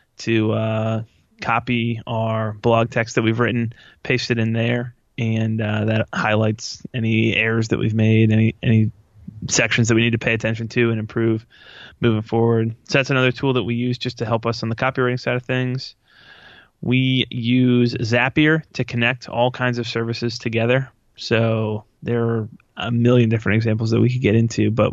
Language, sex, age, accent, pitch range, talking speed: English, male, 20-39, American, 110-125 Hz, 185 wpm